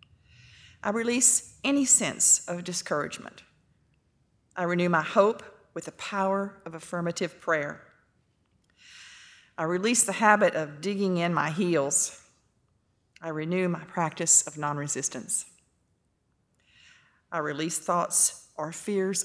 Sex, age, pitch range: female, 40-59, 155-205 Hz